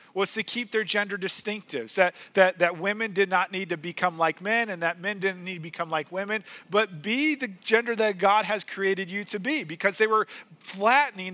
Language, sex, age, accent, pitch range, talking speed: English, male, 40-59, American, 185-235 Hz, 215 wpm